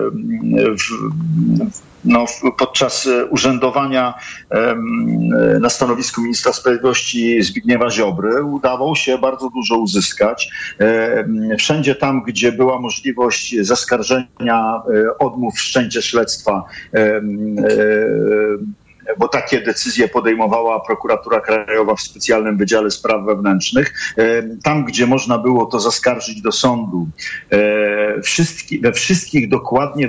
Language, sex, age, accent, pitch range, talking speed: Polish, male, 50-69, native, 115-130 Hz, 90 wpm